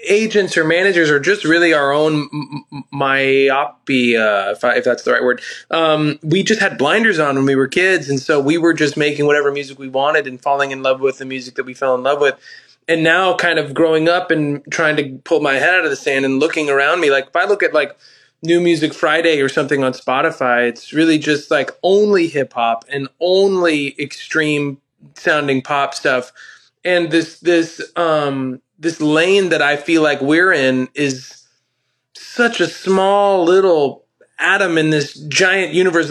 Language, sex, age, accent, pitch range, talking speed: English, male, 20-39, American, 140-175 Hz, 195 wpm